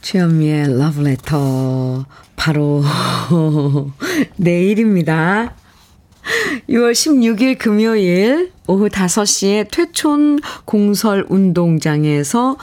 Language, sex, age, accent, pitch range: Korean, female, 40-59, native, 155-230 Hz